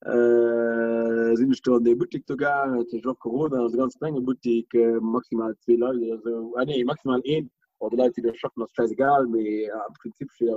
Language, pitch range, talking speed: English, 115-140 Hz, 180 wpm